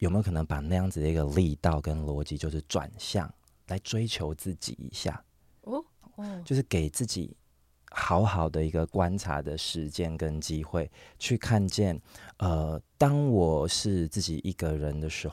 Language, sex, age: Chinese, male, 30-49